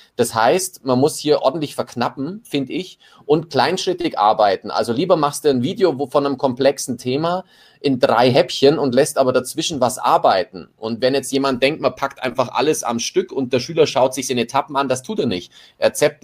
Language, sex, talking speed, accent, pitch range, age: German, male, 205 wpm, German, 125-155 Hz, 30-49